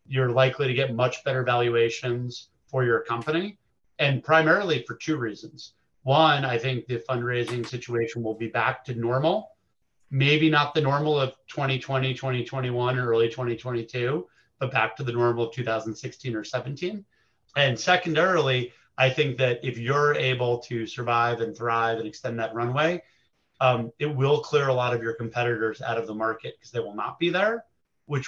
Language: English